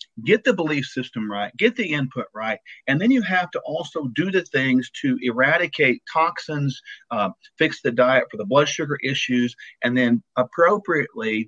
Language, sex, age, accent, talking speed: English, male, 50-69, American, 175 wpm